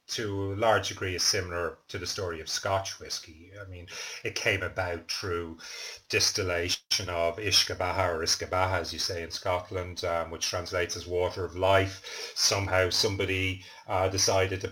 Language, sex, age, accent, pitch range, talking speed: English, male, 30-49, British, 90-100 Hz, 165 wpm